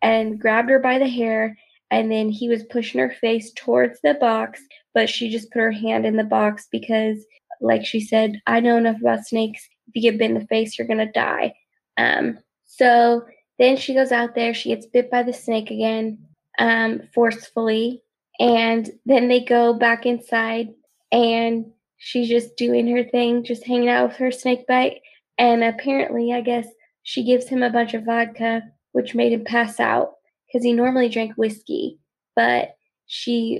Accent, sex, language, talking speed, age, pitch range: American, female, English, 180 wpm, 20-39, 225-245 Hz